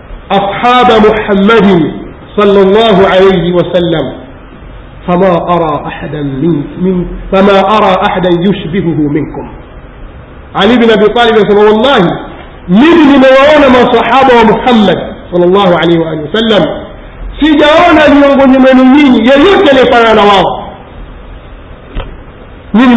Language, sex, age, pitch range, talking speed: Swahili, male, 50-69, 195-275 Hz, 105 wpm